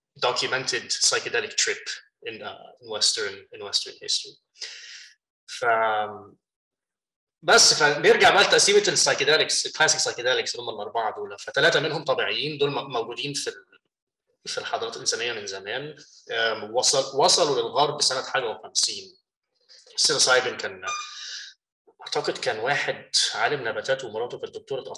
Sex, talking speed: male, 110 wpm